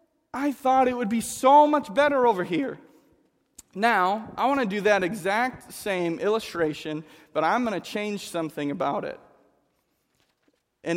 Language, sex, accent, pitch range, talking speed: English, male, American, 165-230 Hz, 155 wpm